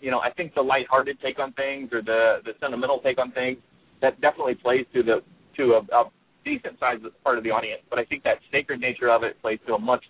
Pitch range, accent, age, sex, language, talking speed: 115-160 Hz, American, 30-49, male, English, 250 wpm